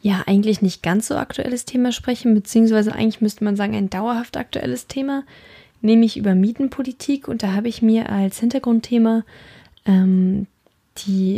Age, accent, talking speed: 20-39, German, 155 wpm